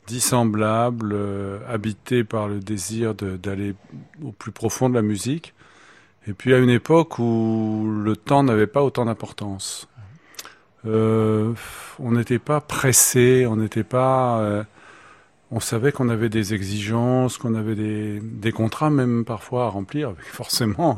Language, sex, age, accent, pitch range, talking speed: French, male, 40-59, French, 105-125 Hz, 135 wpm